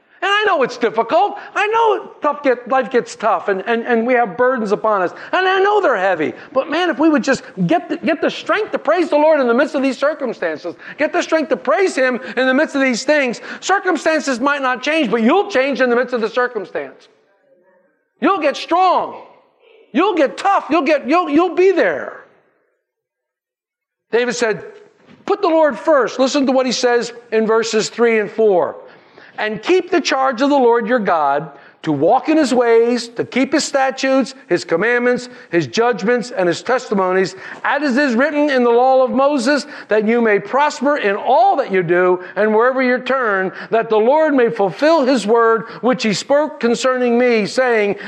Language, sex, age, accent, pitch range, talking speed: English, male, 50-69, American, 220-295 Hz, 200 wpm